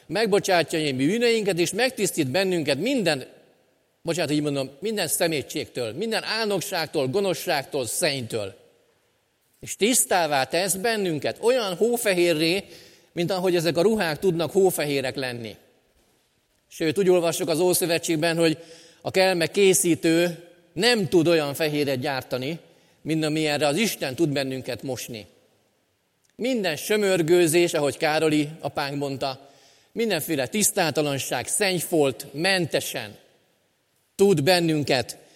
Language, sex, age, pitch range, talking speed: Hungarian, male, 40-59, 150-185 Hz, 105 wpm